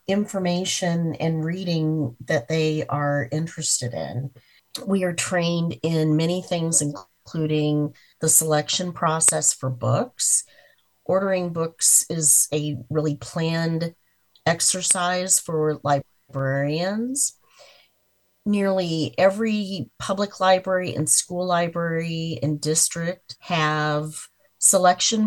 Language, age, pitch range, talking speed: English, 40-59, 155-180 Hz, 95 wpm